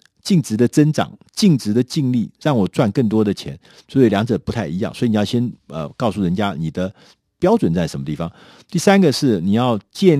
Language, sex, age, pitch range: Chinese, male, 50-69, 95-150 Hz